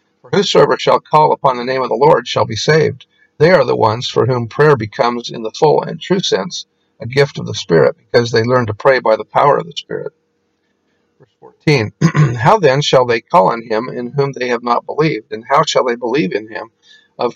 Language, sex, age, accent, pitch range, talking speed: English, male, 50-69, American, 120-160 Hz, 230 wpm